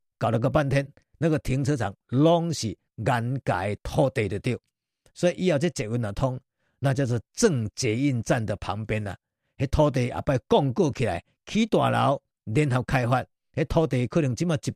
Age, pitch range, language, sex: 50-69, 115-160 Hz, Chinese, male